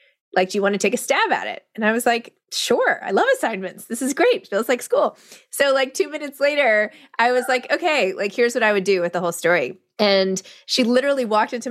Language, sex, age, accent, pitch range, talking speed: English, female, 20-39, American, 185-260 Hz, 245 wpm